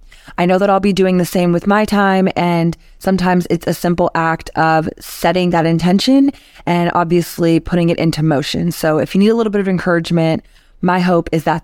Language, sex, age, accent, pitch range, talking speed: English, female, 20-39, American, 165-210 Hz, 205 wpm